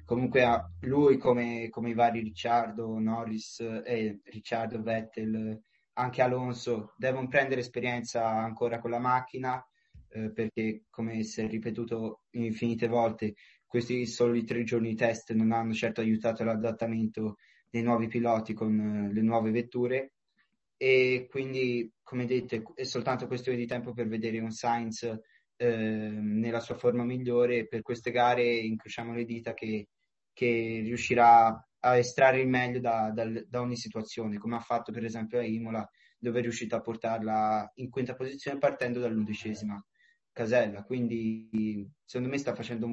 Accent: native